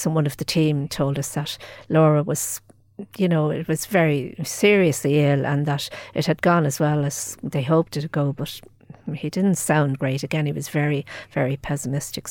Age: 50-69